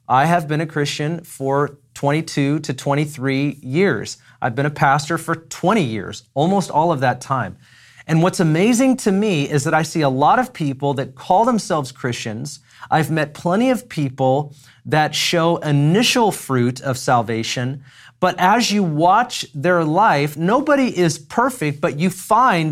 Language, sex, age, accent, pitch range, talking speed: English, male, 30-49, American, 145-210 Hz, 165 wpm